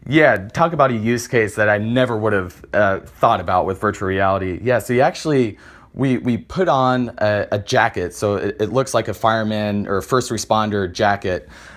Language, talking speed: English, 200 wpm